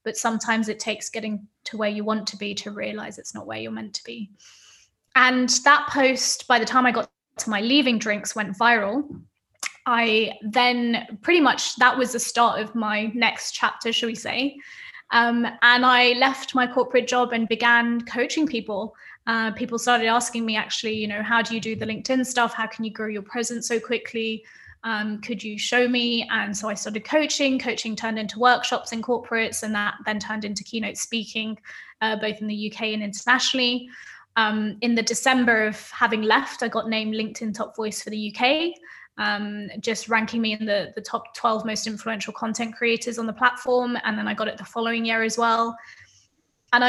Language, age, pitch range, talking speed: English, 20-39, 215-240 Hz, 200 wpm